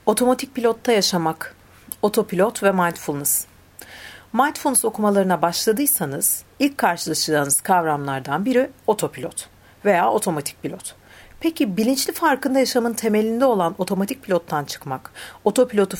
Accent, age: native, 50-69